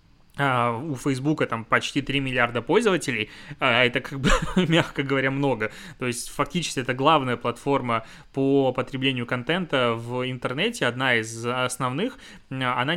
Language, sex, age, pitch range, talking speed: Russian, male, 20-39, 120-145 Hz, 135 wpm